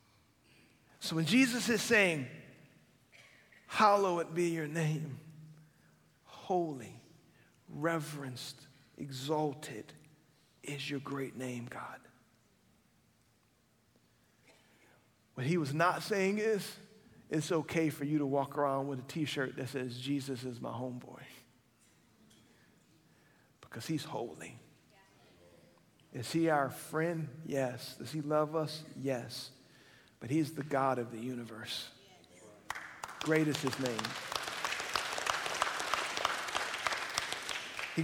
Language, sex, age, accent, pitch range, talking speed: English, male, 50-69, American, 135-180 Hz, 105 wpm